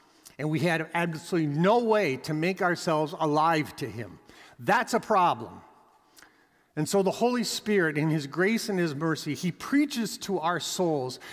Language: English